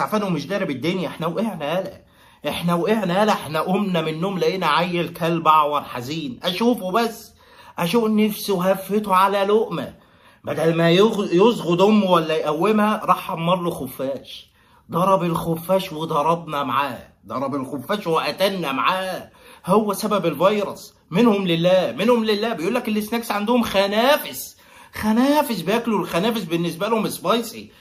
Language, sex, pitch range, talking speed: Arabic, male, 170-215 Hz, 135 wpm